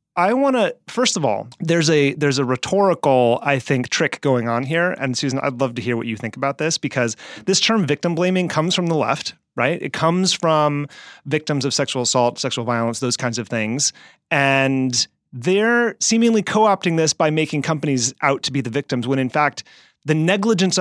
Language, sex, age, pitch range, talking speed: English, male, 30-49, 125-165 Hz, 200 wpm